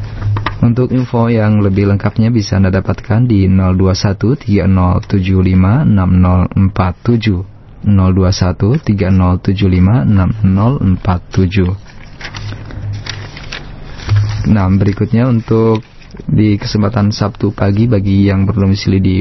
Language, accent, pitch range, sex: Indonesian, native, 95-115 Hz, male